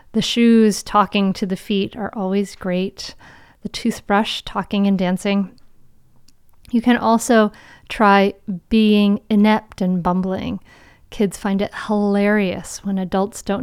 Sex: female